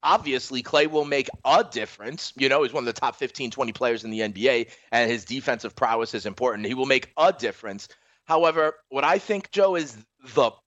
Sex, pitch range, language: male, 125-155 Hz, English